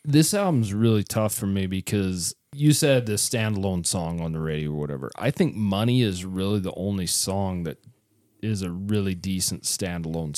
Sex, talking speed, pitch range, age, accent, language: male, 180 wpm, 95-120 Hz, 30-49, American, English